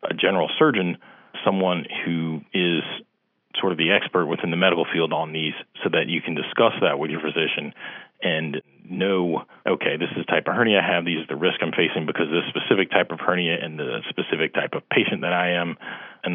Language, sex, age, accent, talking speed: English, male, 40-59, American, 215 wpm